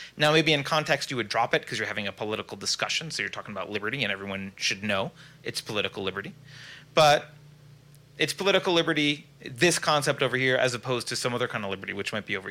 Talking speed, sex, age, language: 220 wpm, male, 30-49, English